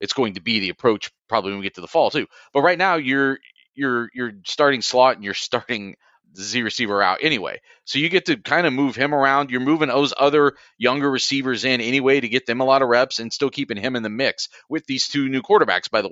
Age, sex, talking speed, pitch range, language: 30-49, male, 255 wpm, 110-135 Hz, English